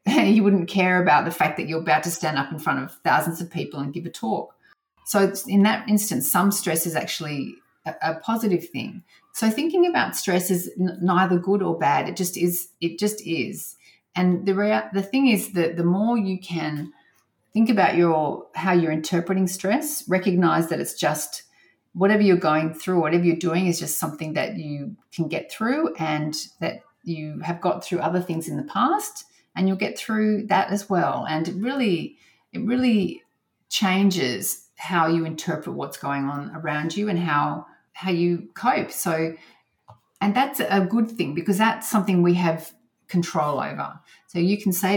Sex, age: female, 30-49